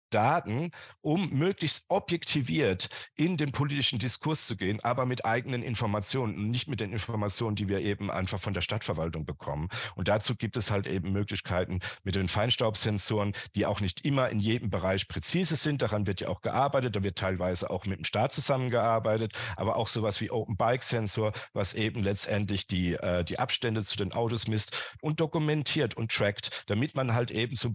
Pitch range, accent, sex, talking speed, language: 100-125 Hz, German, male, 180 wpm, German